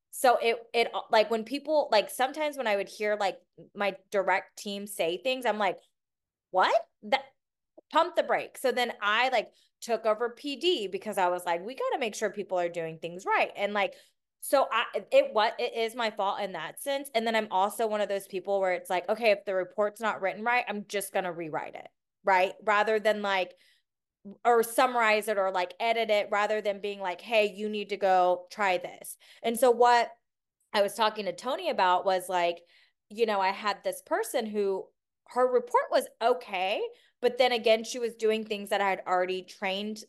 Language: English